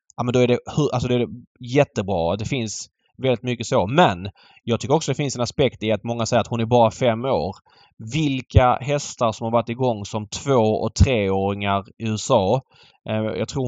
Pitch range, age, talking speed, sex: 105-120 Hz, 20-39, 200 wpm, male